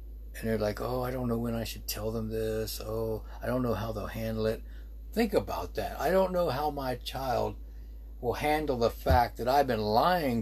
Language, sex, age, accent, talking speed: English, male, 60-79, American, 220 wpm